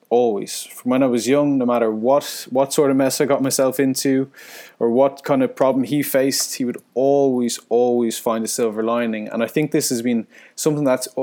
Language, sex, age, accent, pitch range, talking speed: English, male, 20-39, Irish, 120-150 Hz, 215 wpm